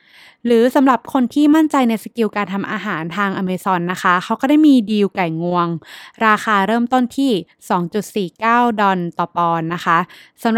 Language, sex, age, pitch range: Thai, female, 20-39, 185-240 Hz